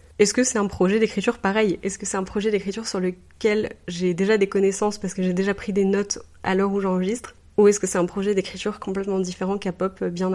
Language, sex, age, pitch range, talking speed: French, female, 30-49, 180-205 Hz, 245 wpm